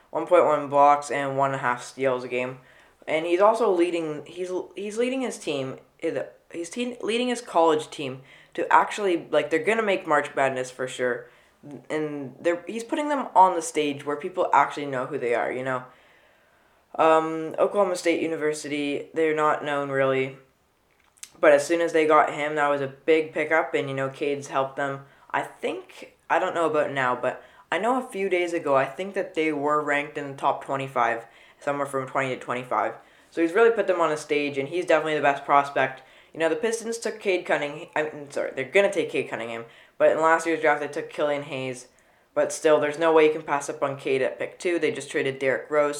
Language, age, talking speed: English, 20-39, 215 wpm